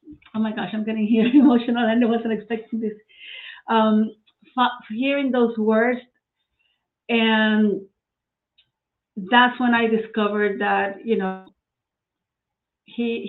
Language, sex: English, female